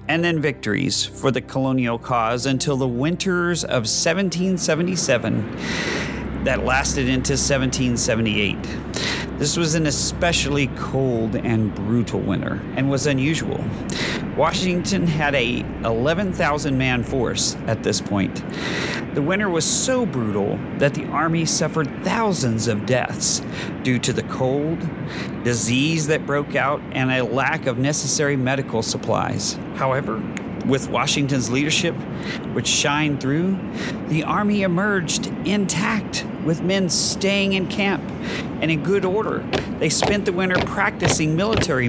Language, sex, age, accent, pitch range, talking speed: English, male, 40-59, American, 130-175 Hz, 125 wpm